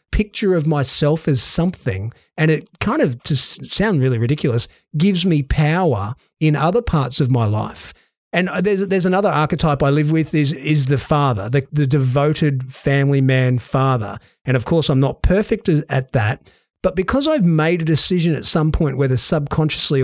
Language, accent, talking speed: English, Australian, 175 wpm